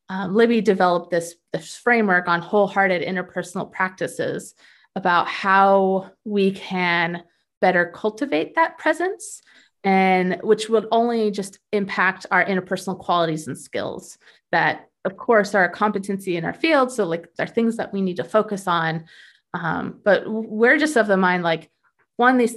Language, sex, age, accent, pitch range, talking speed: English, female, 30-49, American, 175-230 Hz, 155 wpm